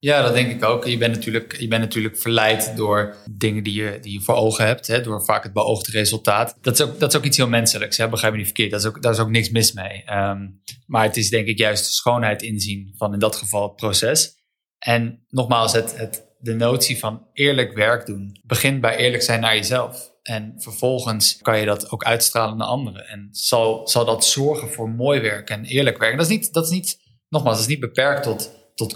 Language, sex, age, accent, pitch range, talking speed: Dutch, male, 20-39, Dutch, 110-125 Hz, 240 wpm